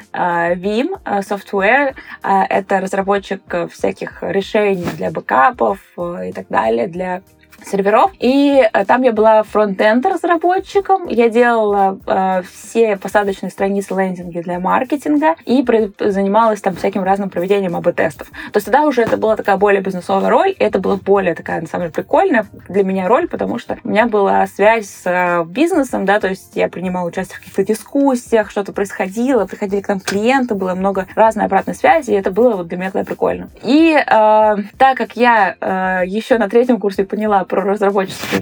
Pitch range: 190-235 Hz